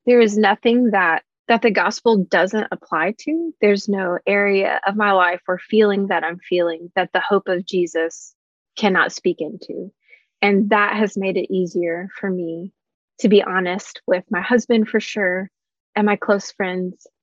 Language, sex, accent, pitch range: English, female, American, 190-250 Hz